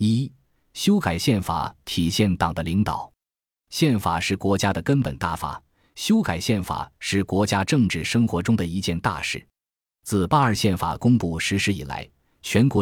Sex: male